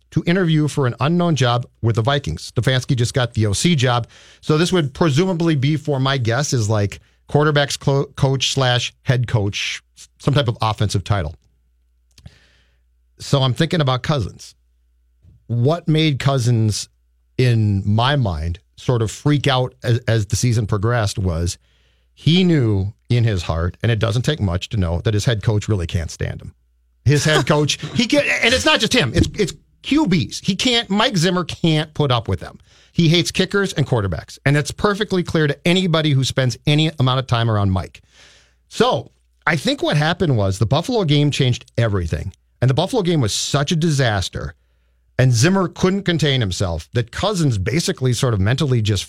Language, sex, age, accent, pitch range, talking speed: English, male, 50-69, American, 100-150 Hz, 180 wpm